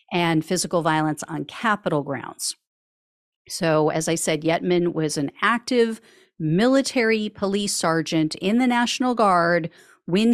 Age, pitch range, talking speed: 40-59, 160-200 Hz, 130 wpm